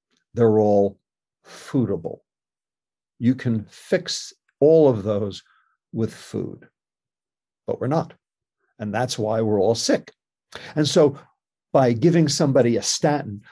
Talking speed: 120 wpm